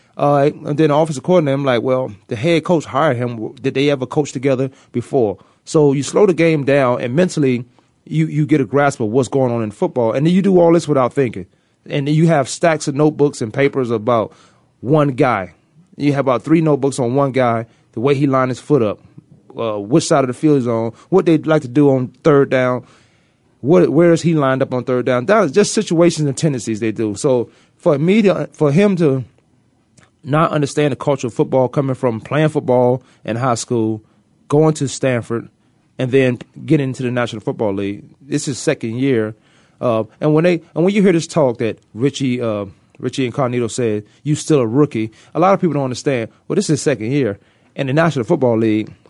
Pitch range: 120-150 Hz